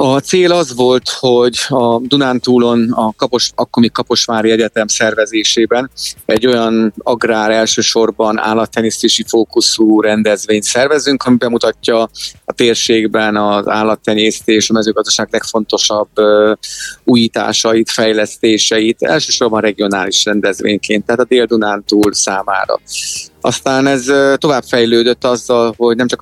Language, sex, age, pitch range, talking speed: Hungarian, male, 30-49, 110-125 Hz, 110 wpm